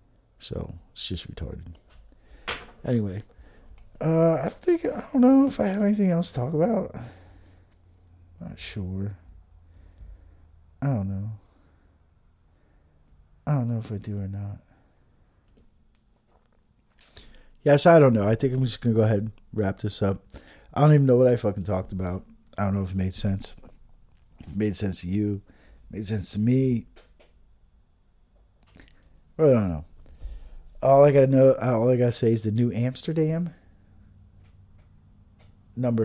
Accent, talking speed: American, 150 wpm